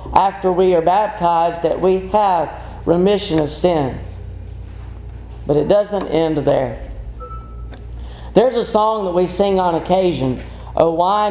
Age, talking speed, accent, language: 40-59, 135 wpm, American, English